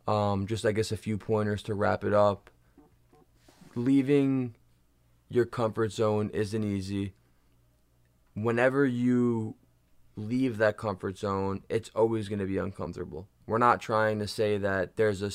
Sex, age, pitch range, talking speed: male, 20-39, 95-115 Hz, 145 wpm